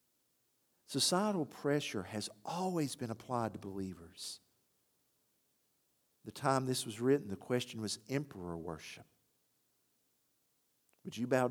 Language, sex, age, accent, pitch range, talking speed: English, male, 50-69, American, 115-155 Hz, 110 wpm